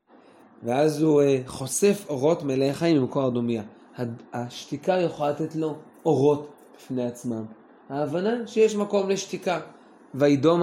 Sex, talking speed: male, 115 wpm